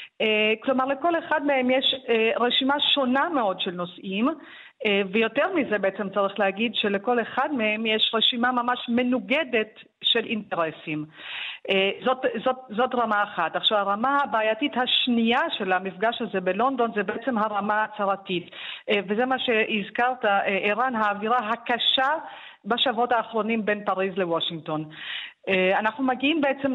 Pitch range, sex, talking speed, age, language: 205-260 Hz, female, 125 wpm, 40-59, Hebrew